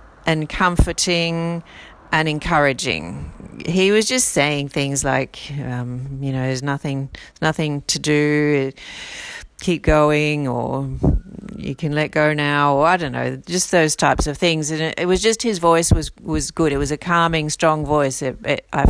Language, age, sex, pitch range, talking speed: English, 40-59, female, 145-180 Hz, 165 wpm